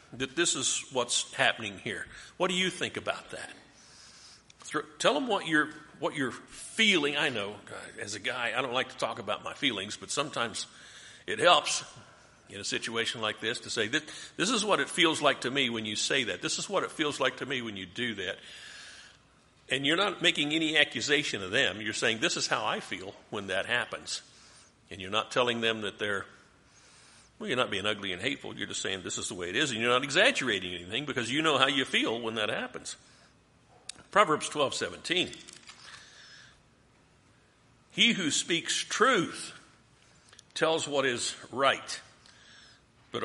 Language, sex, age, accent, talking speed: English, male, 50-69, American, 185 wpm